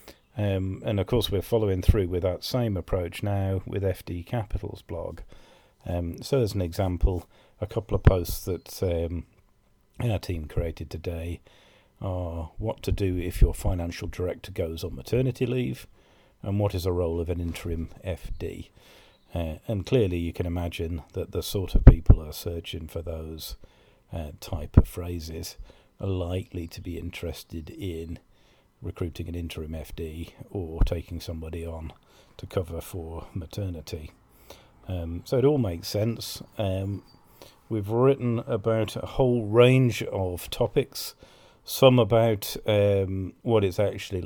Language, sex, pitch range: English, male, 85-110 Hz